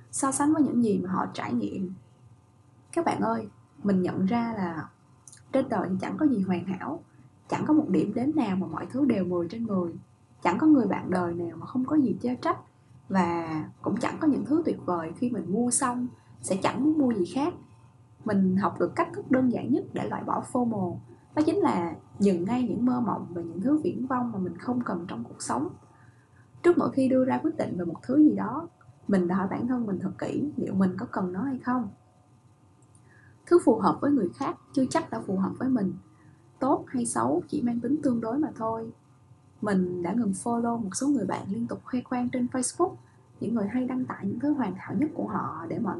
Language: Vietnamese